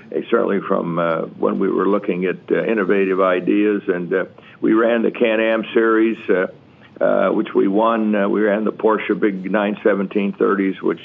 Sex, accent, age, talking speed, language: male, American, 60-79, 170 wpm, English